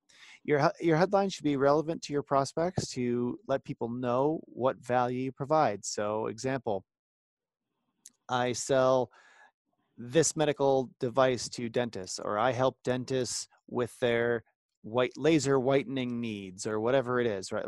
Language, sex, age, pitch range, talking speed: English, male, 30-49, 115-140 Hz, 140 wpm